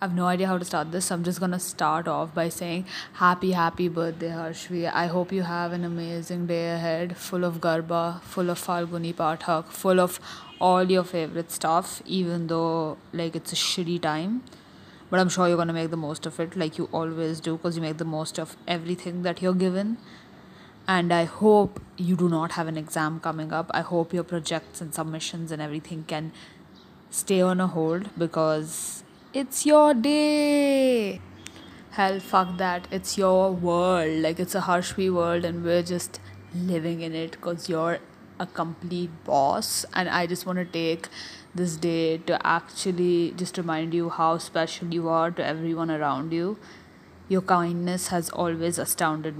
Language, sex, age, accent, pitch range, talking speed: English, female, 20-39, Indian, 165-180 Hz, 180 wpm